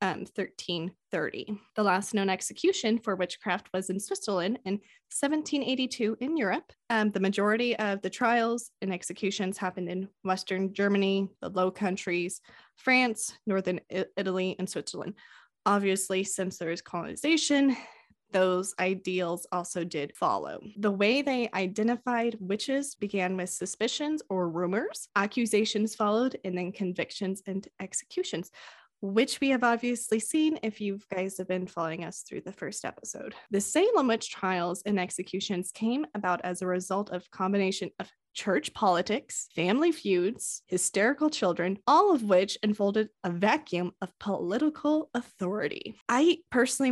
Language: English